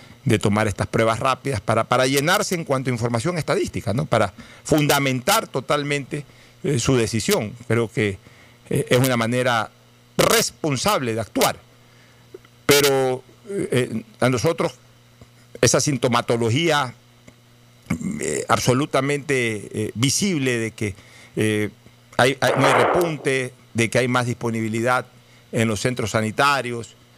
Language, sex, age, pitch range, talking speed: Spanish, male, 50-69, 110-135 Hz, 125 wpm